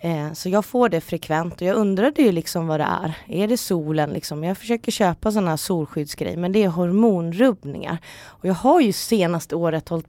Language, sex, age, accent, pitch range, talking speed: Swedish, female, 30-49, native, 155-195 Hz, 210 wpm